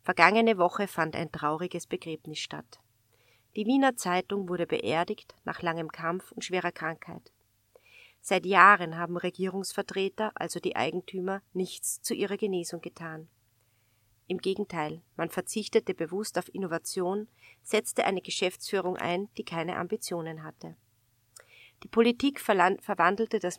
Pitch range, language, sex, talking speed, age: 155-195 Hz, German, female, 125 wpm, 40-59